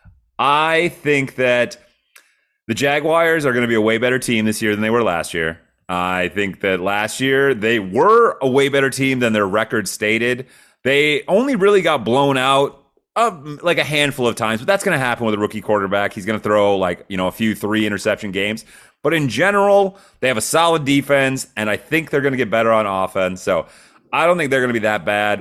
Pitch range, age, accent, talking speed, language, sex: 105-140 Hz, 30-49, American, 225 wpm, English, male